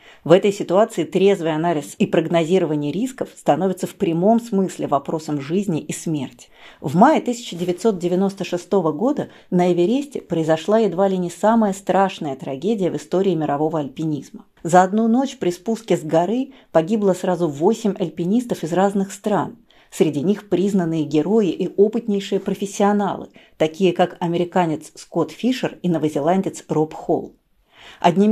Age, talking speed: 40-59, 135 wpm